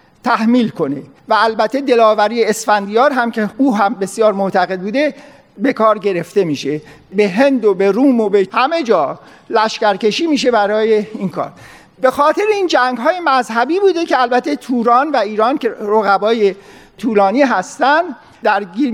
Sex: male